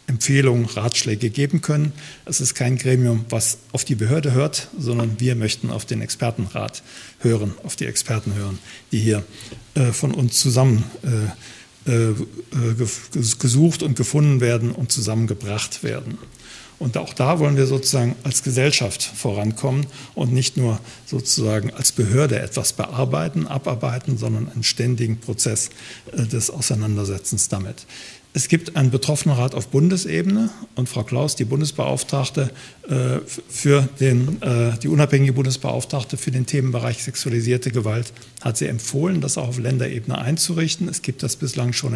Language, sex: German, male